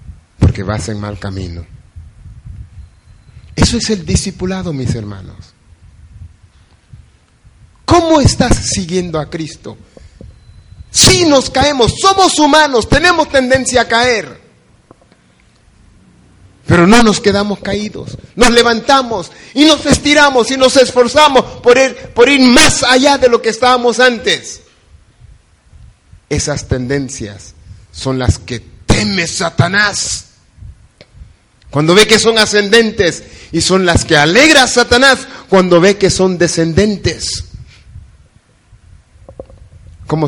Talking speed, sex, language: 110 wpm, male, Spanish